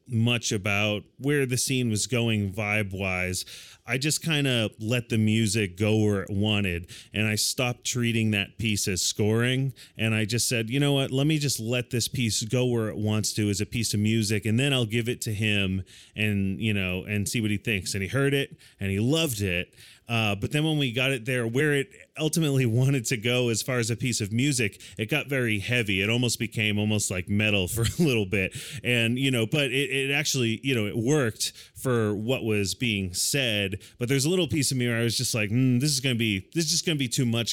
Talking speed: 240 wpm